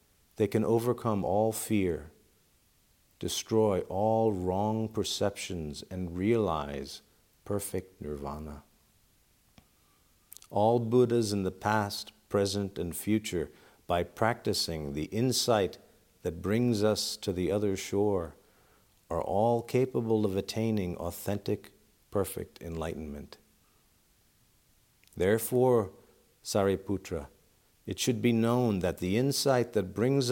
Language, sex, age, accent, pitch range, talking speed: English, male, 50-69, American, 90-115 Hz, 100 wpm